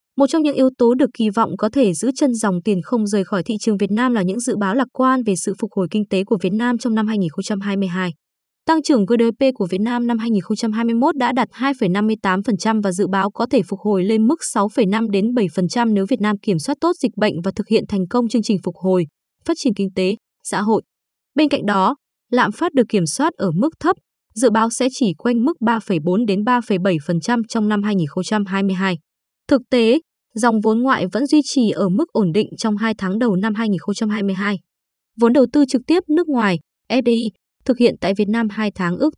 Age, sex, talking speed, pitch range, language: 20-39, female, 215 wpm, 195-250 Hz, Vietnamese